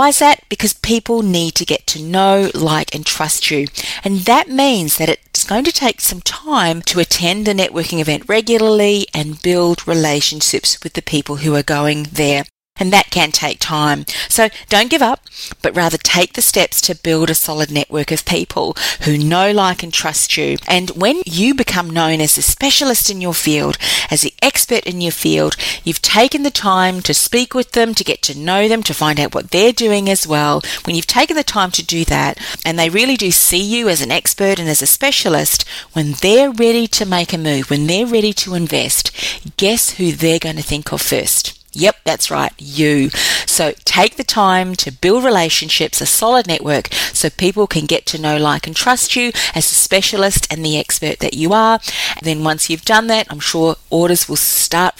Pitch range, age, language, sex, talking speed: 155-220 Hz, 40-59, English, female, 205 wpm